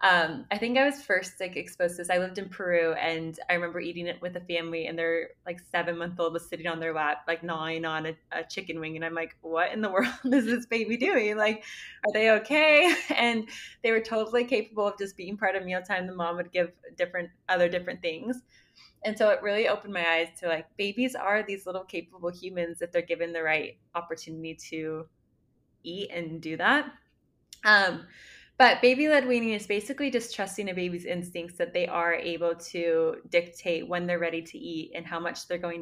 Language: English